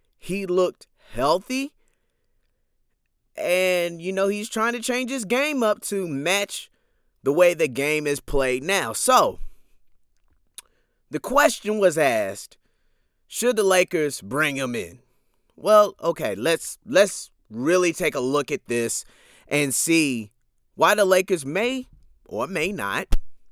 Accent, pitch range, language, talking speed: American, 125-190 Hz, English, 135 wpm